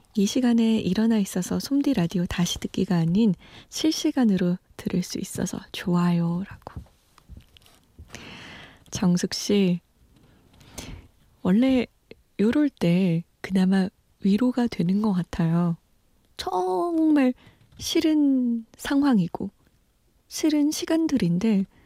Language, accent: Korean, native